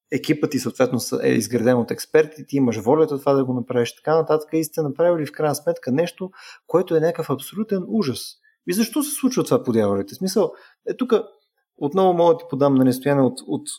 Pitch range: 130-180 Hz